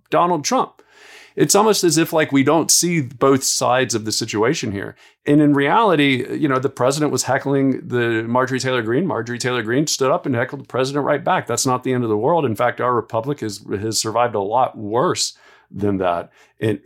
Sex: male